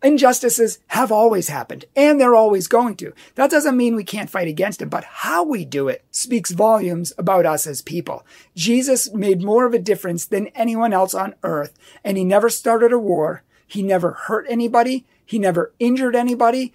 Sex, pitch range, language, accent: male, 175-235 Hz, English, American